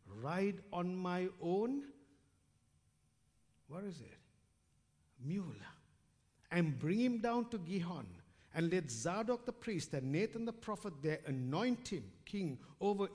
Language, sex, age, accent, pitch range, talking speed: English, male, 60-79, Indian, 110-160 Hz, 130 wpm